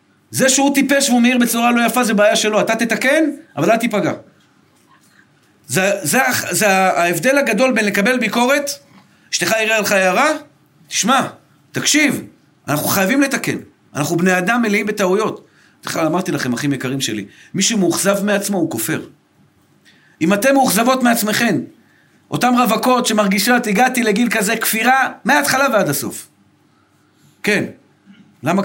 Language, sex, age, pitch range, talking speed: Hebrew, male, 50-69, 200-245 Hz, 130 wpm